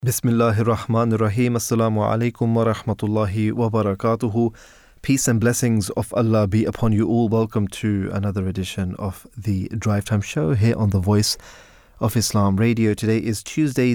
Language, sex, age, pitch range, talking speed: English, male, 20-39, 105-120 Hz, 150 wpm